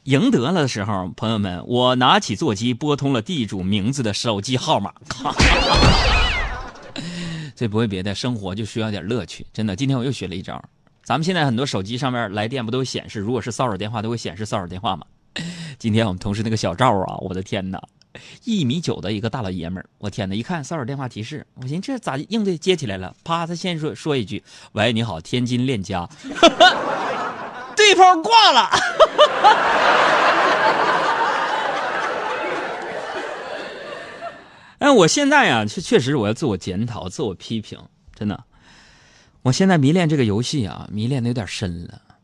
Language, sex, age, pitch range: Chinese, male, 30-49, 100-135 Hz